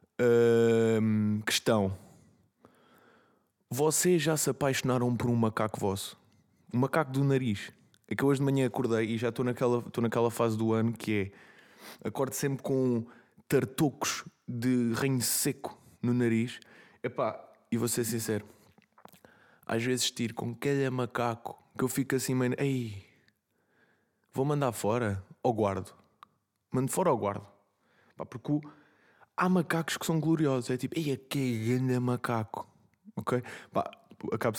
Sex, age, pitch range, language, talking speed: male, 20-39, 110-135 Hz, Portuguese, 140 wpm